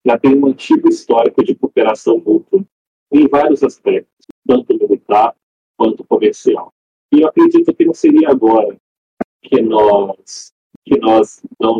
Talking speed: 135 wpm